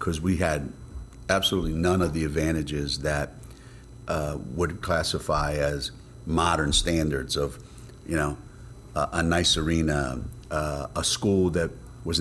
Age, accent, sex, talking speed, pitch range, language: 40-59, American, male, 135 wpm, 80-95 Hz, English